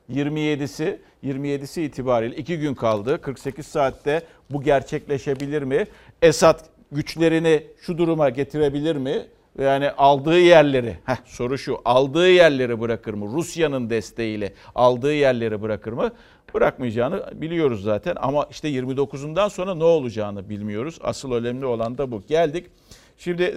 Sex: male